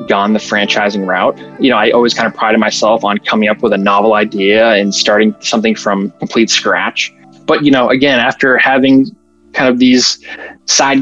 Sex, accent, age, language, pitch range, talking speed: male, American, 20-39, English, 105-125 Hz, 190 wpm